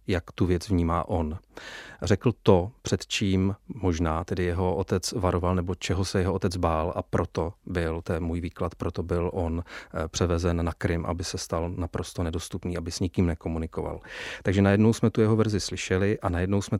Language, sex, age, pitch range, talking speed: Czech, male, 40-59, 85-95 Hz, 180 wpm